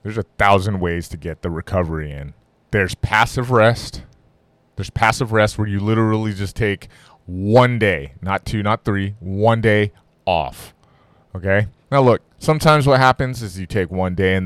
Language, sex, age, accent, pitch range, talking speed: English, male, 20-39, American, 90-110 Hz, 170 wpm